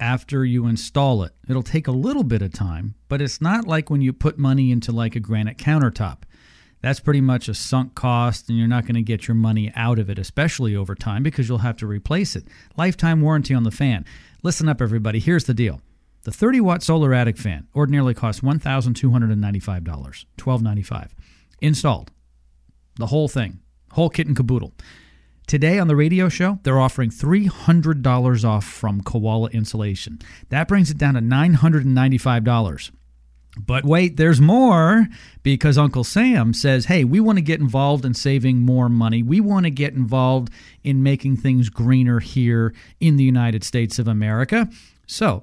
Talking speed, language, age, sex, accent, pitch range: 175 wpm, English, 40-59, male, American, 110-145 Hz